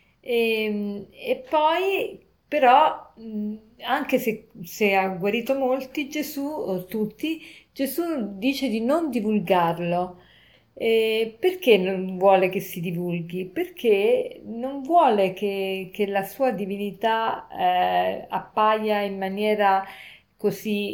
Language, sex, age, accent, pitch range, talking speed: Italian, female, 40-59, native, 190-235 Hz, 105 wpm